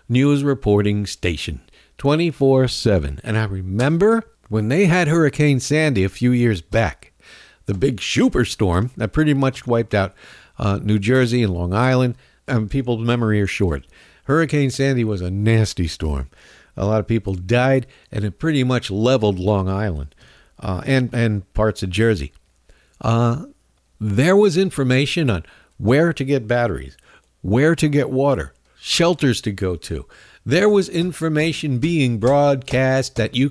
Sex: male